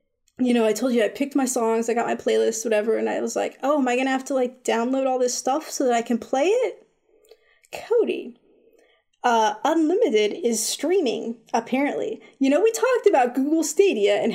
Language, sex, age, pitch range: English, female, 20-39, 225-325 Hz